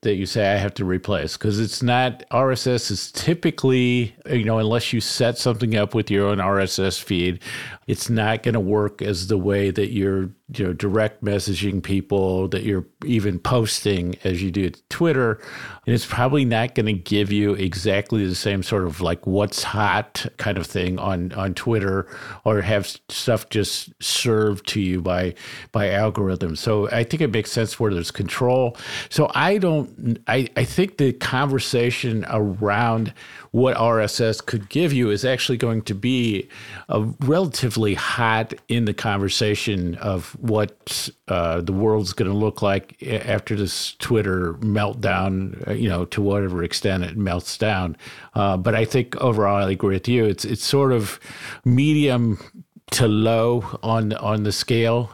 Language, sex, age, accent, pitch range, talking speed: English, male, 50-69, American, 100-120 Hz, 170 wpm